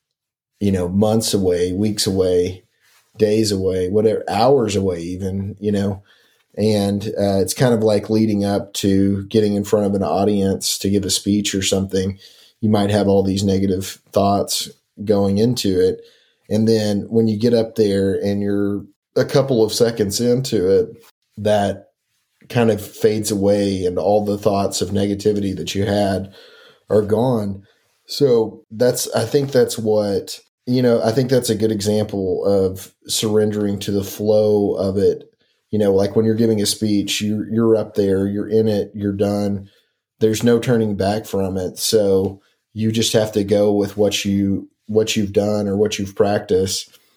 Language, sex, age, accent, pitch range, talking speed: English, male, 30-49, American, 100-110 Hz, 175 wpm